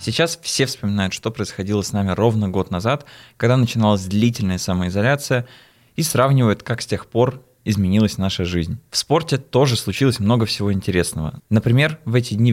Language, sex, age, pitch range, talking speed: Russian, male, 20-39, 100-120 Hz, 165 wpm